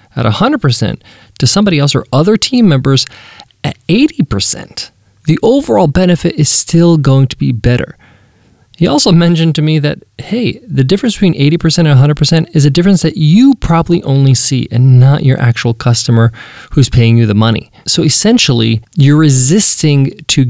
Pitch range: 125-175 Hz